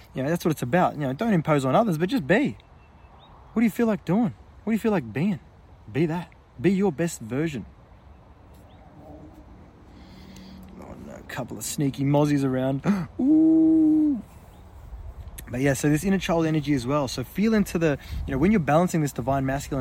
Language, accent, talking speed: English, Australian, 190 wpm